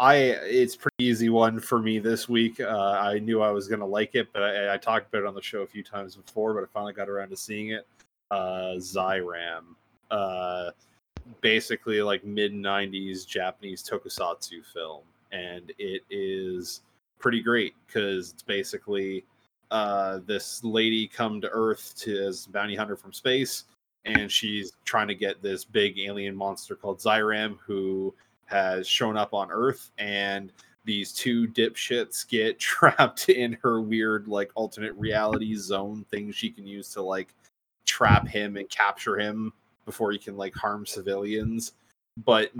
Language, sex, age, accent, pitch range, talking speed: English, male, 20-39, American, 100-110 Hz, 165 wpm